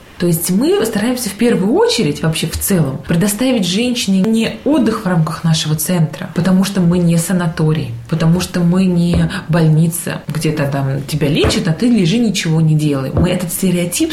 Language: Russian